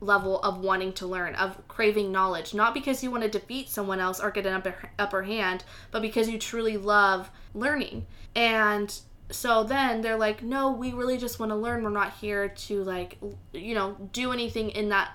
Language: English